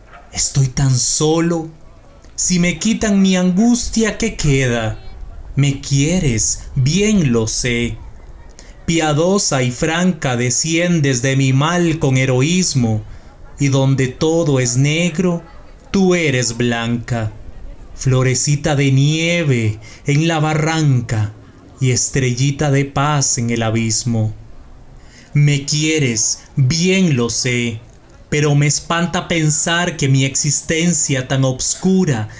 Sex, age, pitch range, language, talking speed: male, 30-49, 120-165 Hz, English, 110 wpm